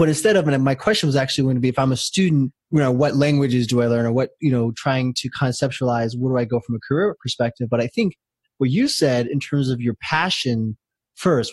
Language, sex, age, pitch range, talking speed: English, male, 20-39, 120-140 Hz, 255 wpm